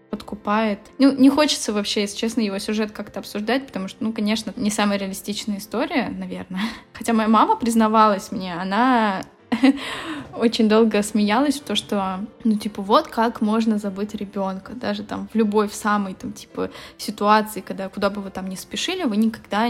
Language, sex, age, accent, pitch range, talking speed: Russian, female, 10-29, native, 205-240 Hz, 175 wpm